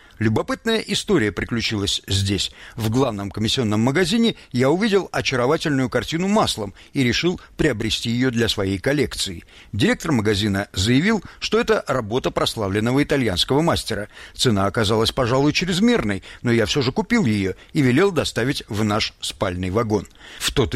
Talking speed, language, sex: 140 wpm, Russian, male